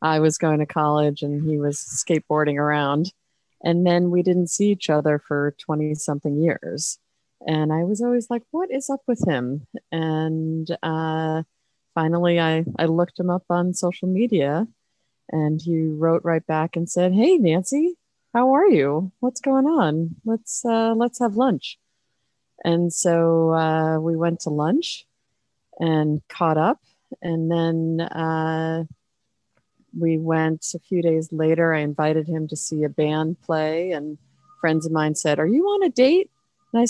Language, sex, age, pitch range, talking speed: English, female, 30-49, 150-185 Hz, 165 wpm